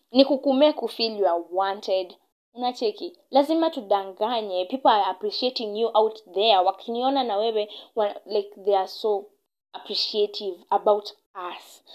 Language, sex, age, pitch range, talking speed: English, female, 20-39, 205-285 Hz, 130 wpm